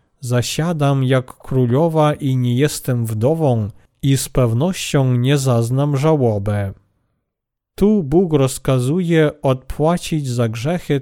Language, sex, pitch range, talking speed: Polish, male, 125-155 Hz, 105 wpm